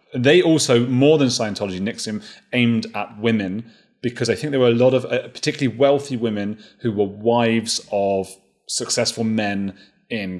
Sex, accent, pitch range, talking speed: male, British, 95-115 Hz, 160 wpm